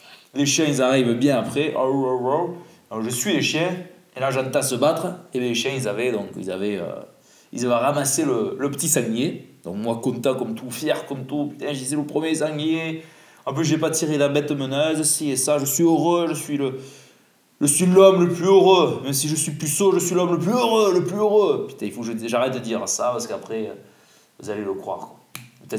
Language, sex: French, male